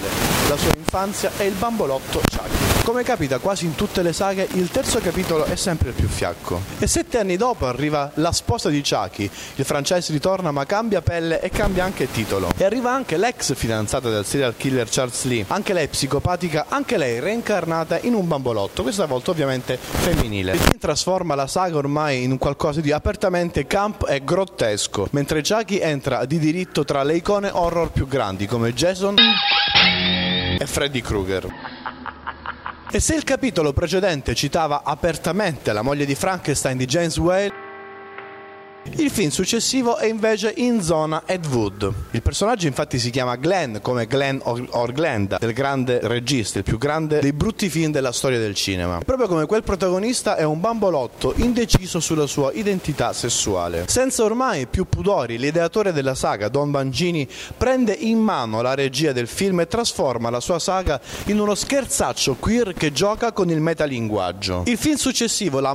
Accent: native